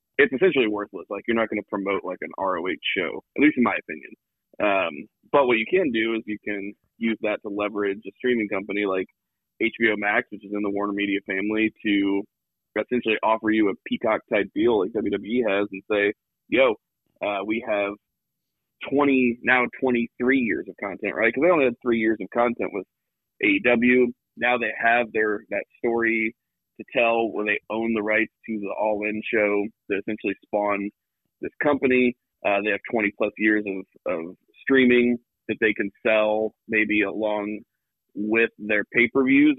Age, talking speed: 20-39, 175 wpm